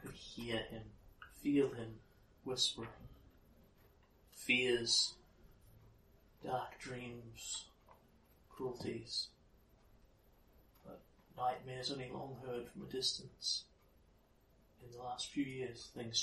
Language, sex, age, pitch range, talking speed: English, male, 30-49, 90-120 Hz, 90 wpm